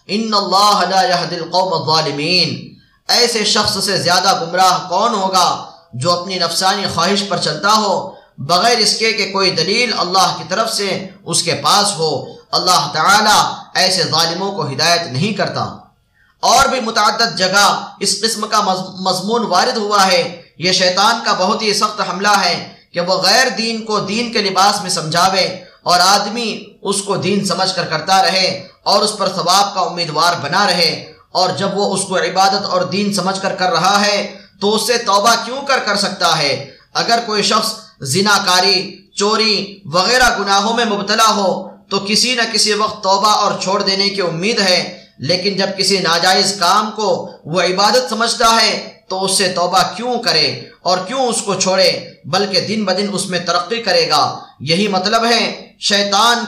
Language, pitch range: Arabic, 180-215 Hz